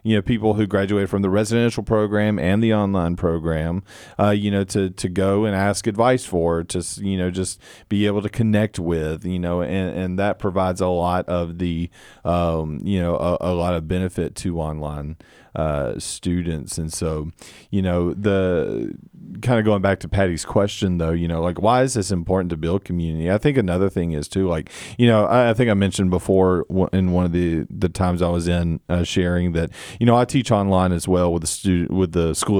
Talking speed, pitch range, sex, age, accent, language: 215 wpm, 85-105 Hz, male, 40-59, American, English